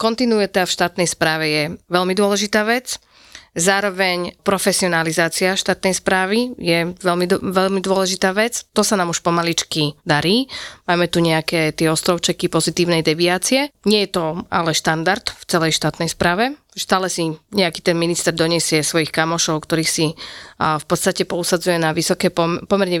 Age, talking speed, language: 30-49, 145 wpm, Slovak